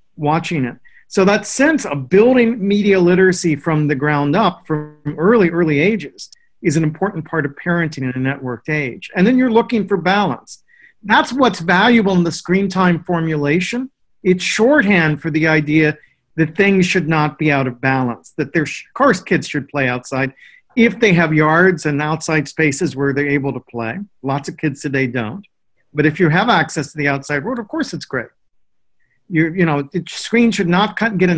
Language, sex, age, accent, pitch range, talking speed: English, male, 50-69, American, 145-185 Hz, 195 wpm